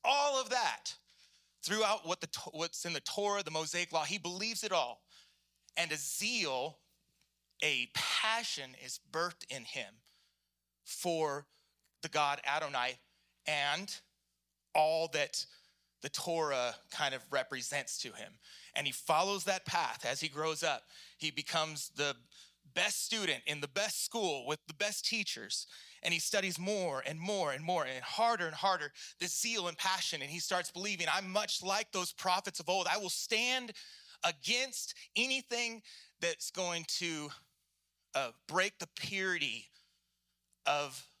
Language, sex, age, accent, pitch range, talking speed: English, male, 30-49, American, 150-200 Hz, 145 wpm